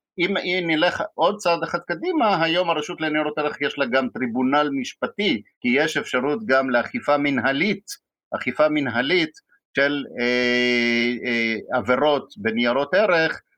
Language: Hebrew